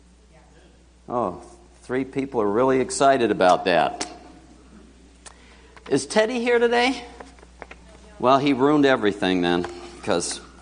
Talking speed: 100 wpm